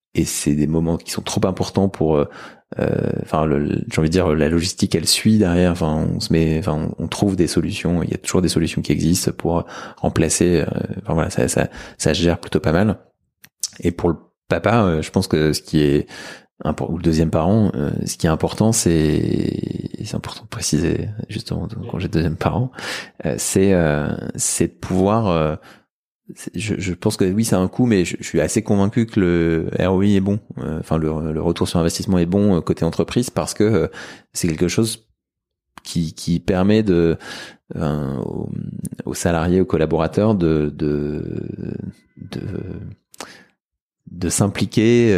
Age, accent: 20-39, French